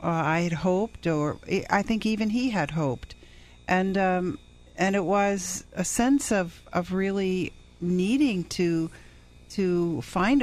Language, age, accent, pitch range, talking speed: English, 50-69, American, 160-210 Hz, 140 wpm